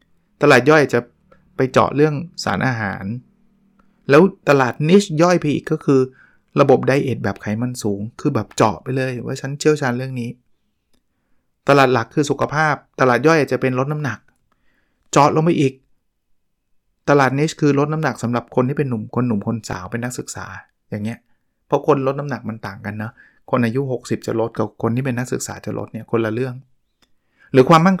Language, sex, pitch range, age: Thai, male, 115-150 Hz, 20-39